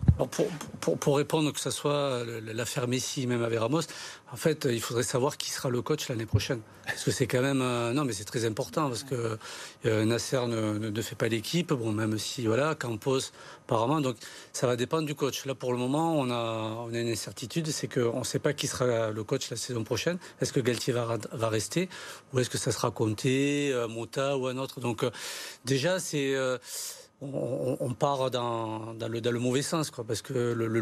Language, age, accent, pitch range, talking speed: French, 40-59, French, 120-140 Hz, 220 wpm